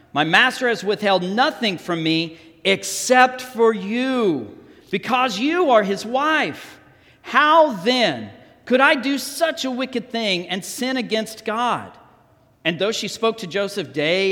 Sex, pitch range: male, 170-255 Hz